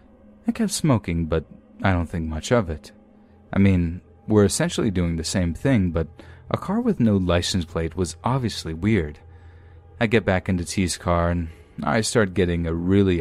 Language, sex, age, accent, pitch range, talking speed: English, male, 30-49, American, 80-105 Hz, 180 wpm